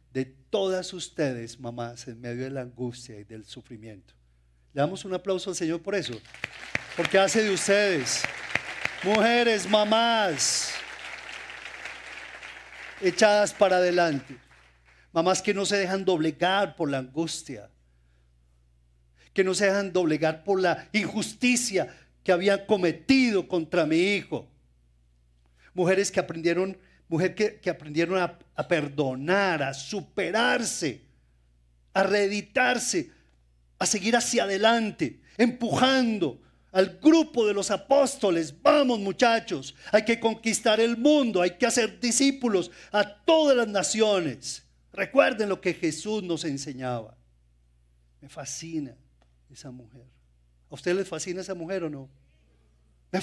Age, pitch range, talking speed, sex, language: 40-59, 125-205 Hz, 125 wpm, male, Spanish